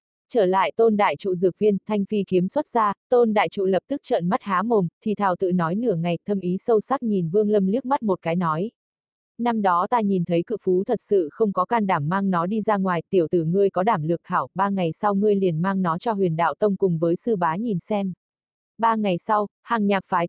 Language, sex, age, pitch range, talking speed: Vietnamese, female, 20-39, 180-220 Hz, 255 wpm